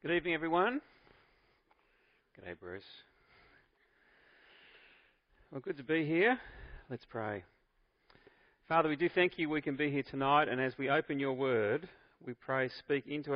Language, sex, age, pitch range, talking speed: English, male, 40-59, 130-170 Hz, 150 wpm